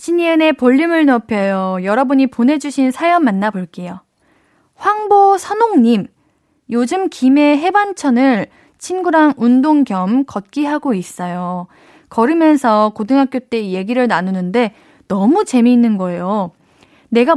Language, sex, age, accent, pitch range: Korean, female, 20-39, native, 205-310 Hz